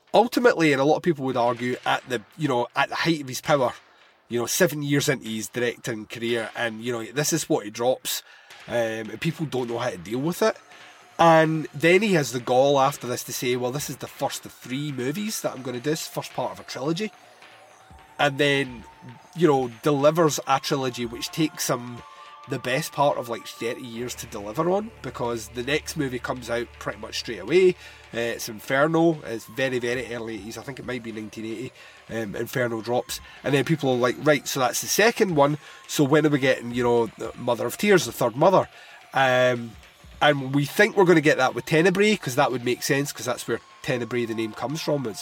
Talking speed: 225 wpm